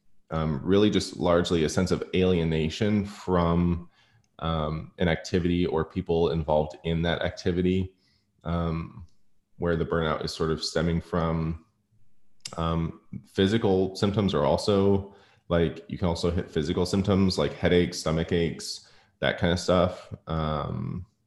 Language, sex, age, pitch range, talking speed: English, male, 20-39, 80-95 Hz, 135 wpm